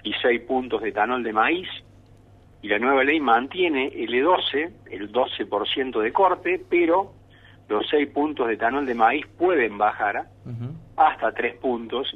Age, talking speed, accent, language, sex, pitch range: 50-69, 155 wpm, Argentinian, Spanish, male, 105-145 Hz